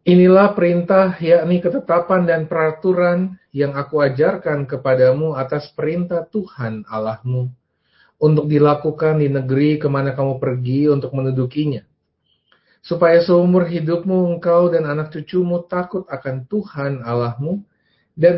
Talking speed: 115 wpm